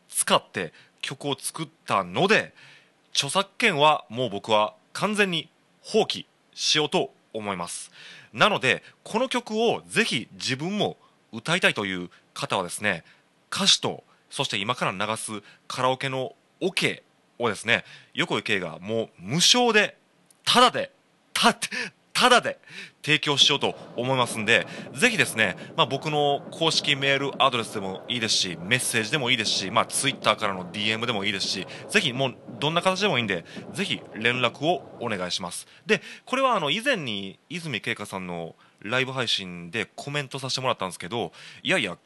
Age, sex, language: 30-49, male, Japanese